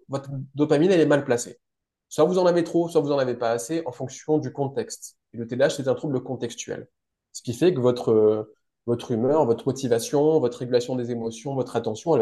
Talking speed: 215 wpm